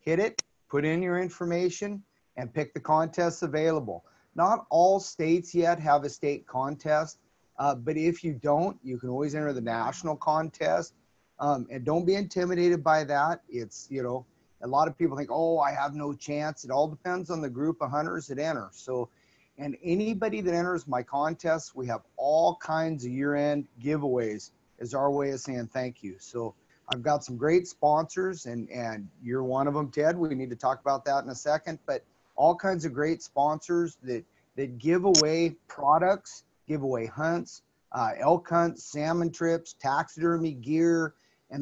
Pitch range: 135-170 Hz